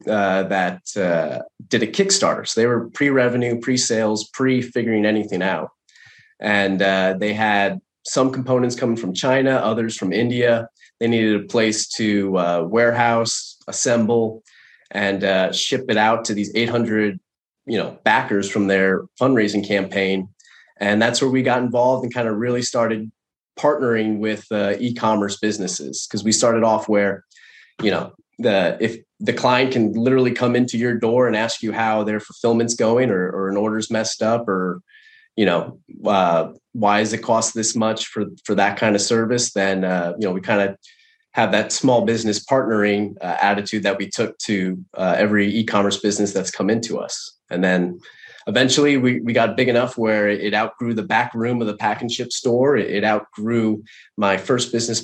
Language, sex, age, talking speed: English, male, 30-49, 180 wpm